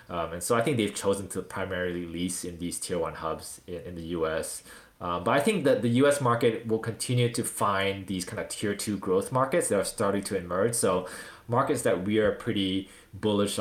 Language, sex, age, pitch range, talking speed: English, male, 20-39, 90-110 Hz, 220 wpm